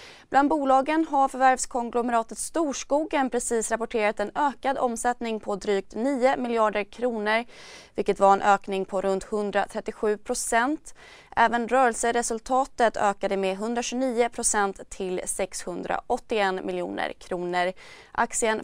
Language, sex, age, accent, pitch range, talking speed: Swedish, female, 20-39, native, 200-255 Hz, 110 wpm